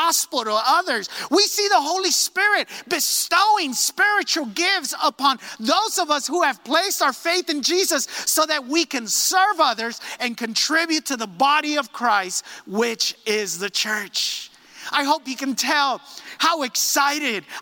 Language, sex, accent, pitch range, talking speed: English, male, American, 265-335 Hz, 155 wpm